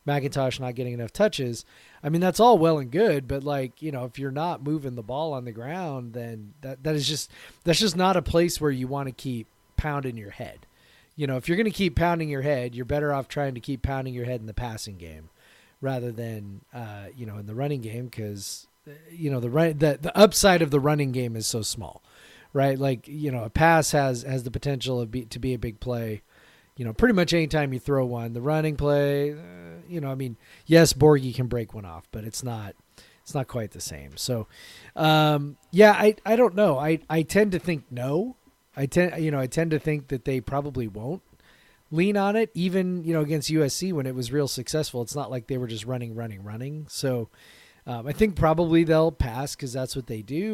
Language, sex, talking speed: English, male, 235 wpm